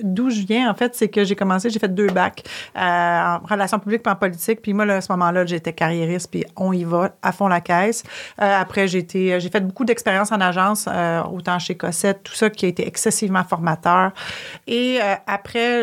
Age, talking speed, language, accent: 40-59, 230 wpm, French, Canadian